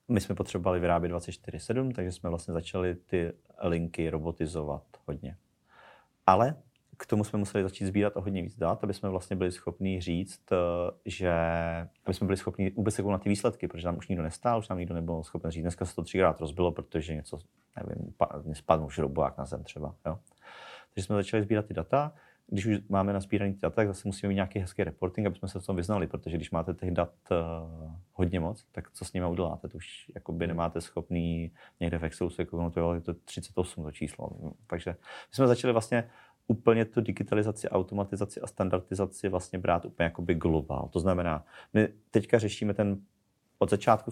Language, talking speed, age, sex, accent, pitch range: Czech, 195 wpm, 30-49, male, native, 85-100 Hz